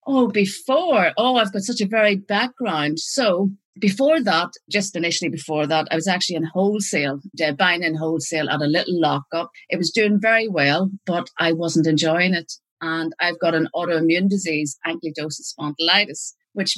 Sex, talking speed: female, 170 wpm